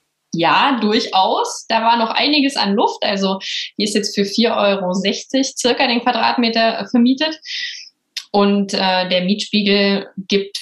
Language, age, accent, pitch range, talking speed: German, 20-39, German, 195-270 Hz, 135 wpm